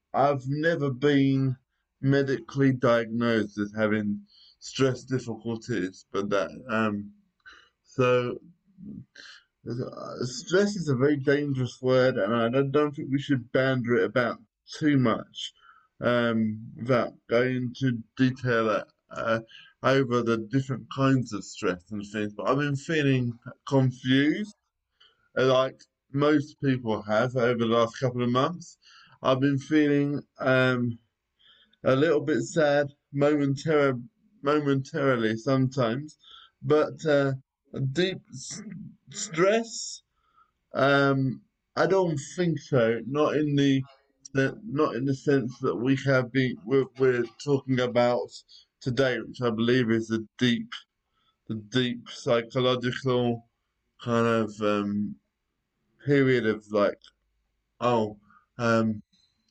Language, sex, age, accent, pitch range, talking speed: English, male, 20-39, British, 115-140 Hz, 115 wpm